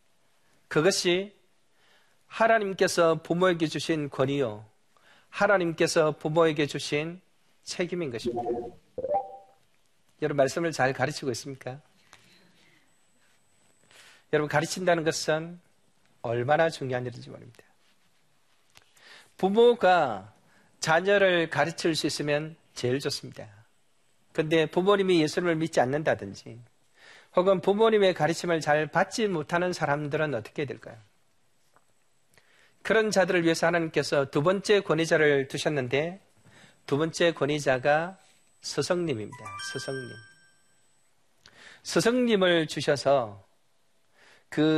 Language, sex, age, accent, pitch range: Korean, male, 40-59, native, 140-180 Hz